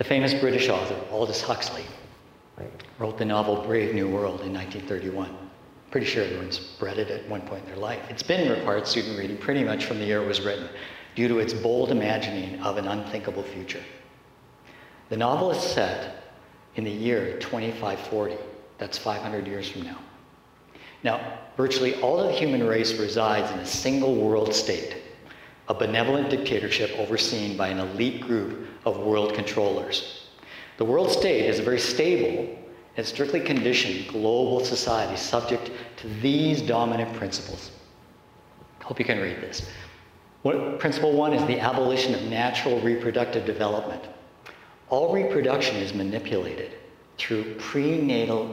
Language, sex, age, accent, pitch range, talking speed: English, male, 60-79, American, 105-125 Hz, 150 wpm